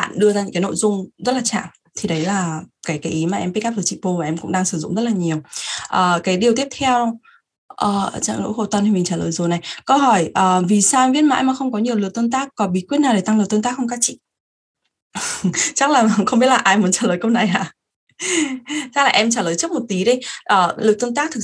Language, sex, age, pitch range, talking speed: Vietnamese, female, 20-39, 180-235 Hz, 270 wpm